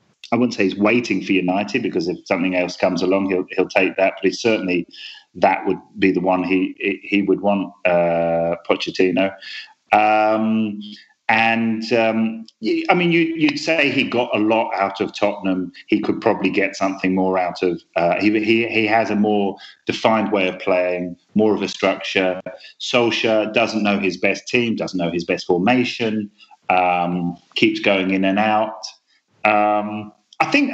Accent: British